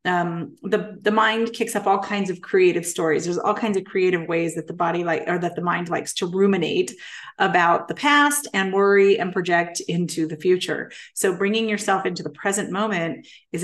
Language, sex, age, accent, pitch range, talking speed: English, female, 30-49, American, 175-220 Hz, 200 wpm